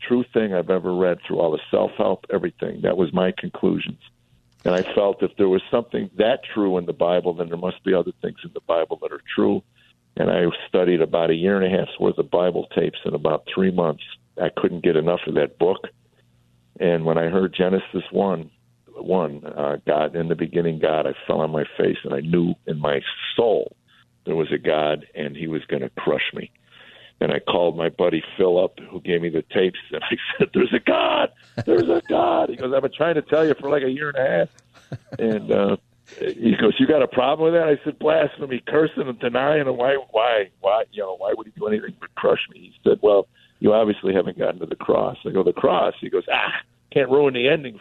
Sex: male